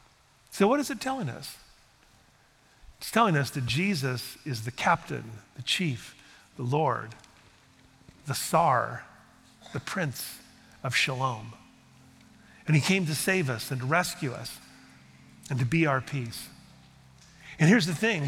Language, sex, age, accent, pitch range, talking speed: English, male, 40-59, American, 110-165 Hz, 140 wpm